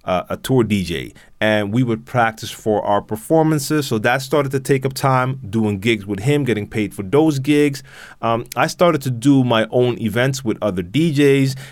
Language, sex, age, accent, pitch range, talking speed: English, male, 30-49, American, 110-140 Hz, 195 wpm